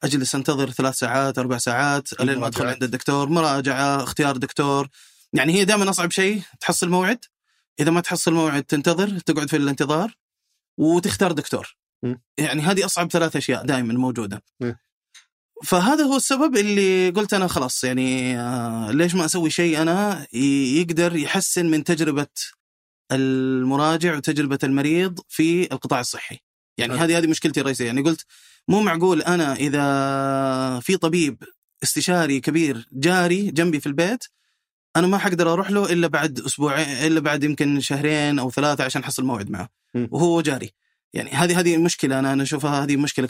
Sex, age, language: male, 20-39, Arabic